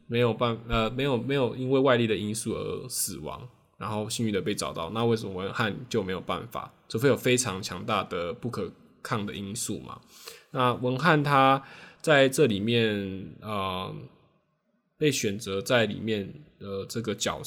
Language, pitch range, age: Chinese, 100-120 Hz, 10-29